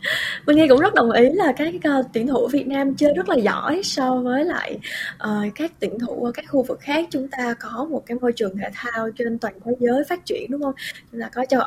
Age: 10-29